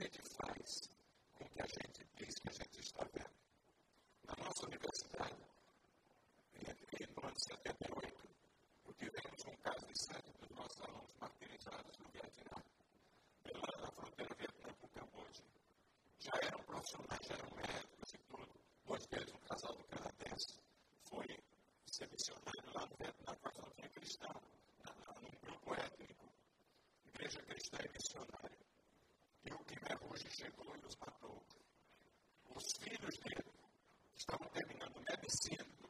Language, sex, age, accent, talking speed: Portuguese, female, 40-59, American, 145 wpm